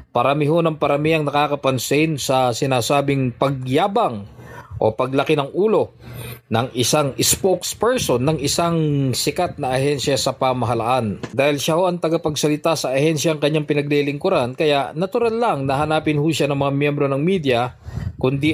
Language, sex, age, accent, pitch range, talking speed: English, male, 20-39, Filipino, 135-160 Hz, 145 wpm